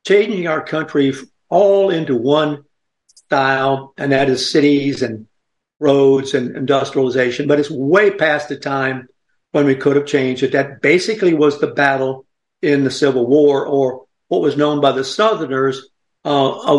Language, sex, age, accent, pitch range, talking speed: English, male, 60-79, American, 130-150 Hz, 160 wpm